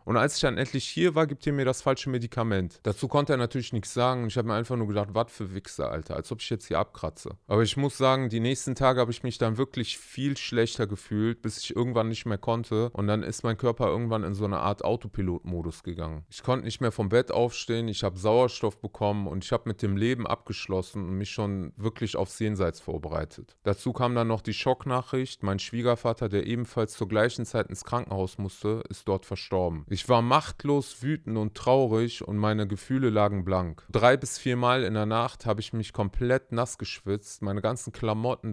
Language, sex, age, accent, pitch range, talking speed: German, male, 30-49, German, 105-125 Hz, 215 wpm